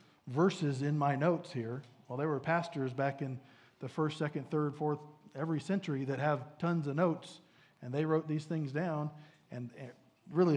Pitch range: 135-155 Hz